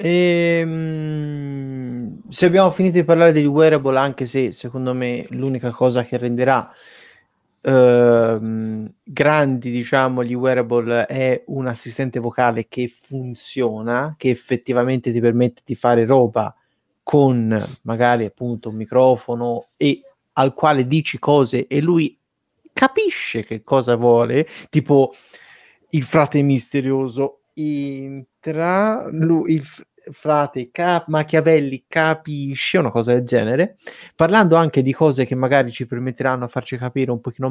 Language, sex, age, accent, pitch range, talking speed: Italian, male, 30-49, native, 120-150 Hz, 120 wpm